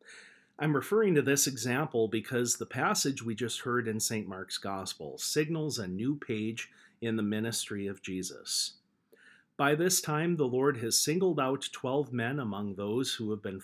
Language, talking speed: English, 170 wpm